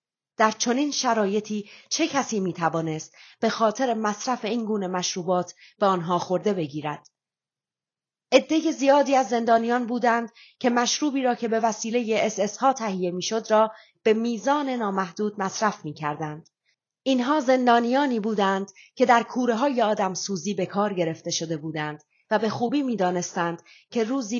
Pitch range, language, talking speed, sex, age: 180-235 Hz, Persian, 140 wpm, female, 30-49